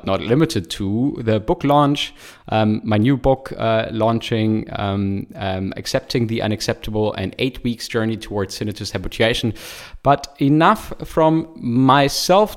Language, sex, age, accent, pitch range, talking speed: English, male, 20-39, German, 110-145 Hz, 135 wpm